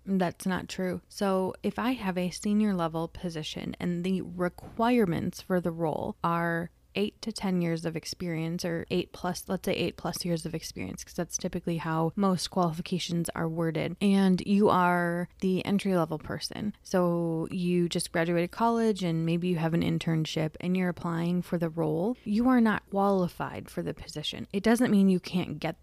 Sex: female